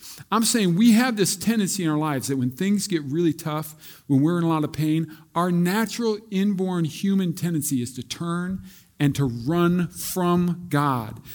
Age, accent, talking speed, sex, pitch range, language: 50-69, American, 185 wpm, male, 150-210 Hz, English